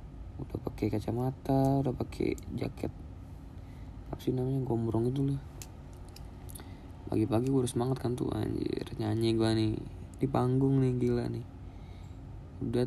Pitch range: 105-135 Hz